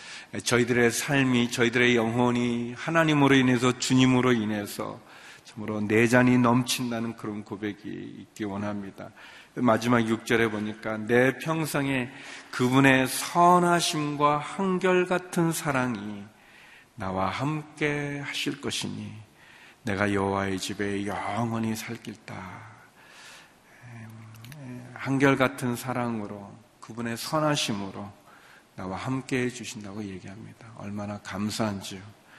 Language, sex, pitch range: Korean, male, 105-125 Hz